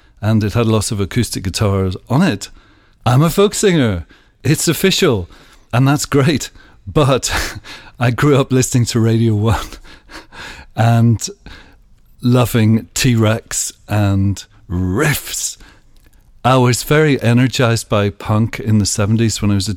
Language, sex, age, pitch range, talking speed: English, male, 50-69, 105-125 Hz, 135 wpm